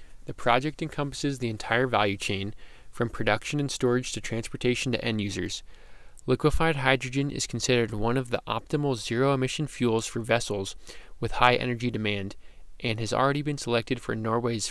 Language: English